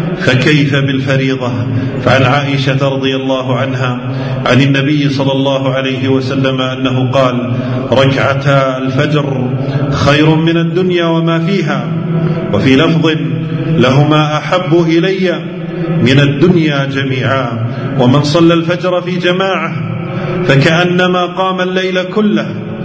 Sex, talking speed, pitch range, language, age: male, 100 wpm, 135-165 Hz, Arabic, 40-59